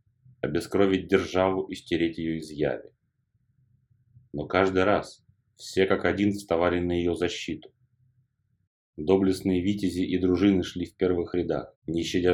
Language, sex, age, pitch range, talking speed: Russian, male, 30-49, 90-115 Hz, 130 wpm